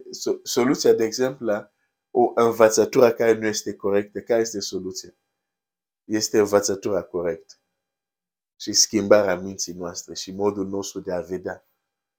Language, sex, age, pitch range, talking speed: Romanian, male, 50-69, 100-115 Hz, 130 wpm